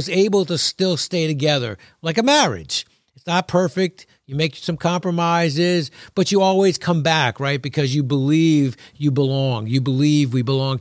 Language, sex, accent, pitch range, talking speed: English, male, American, 135-170 Hz, 165 wpm